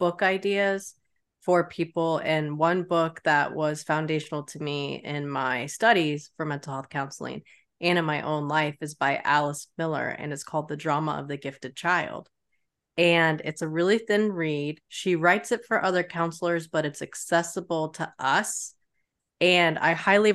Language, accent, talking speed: English, American, 170 wpm